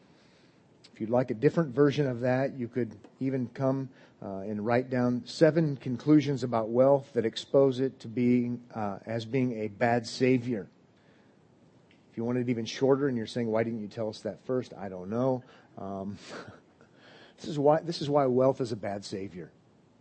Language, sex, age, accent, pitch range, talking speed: English, male, 40-59, American, 110-140 Hz, 185 wpm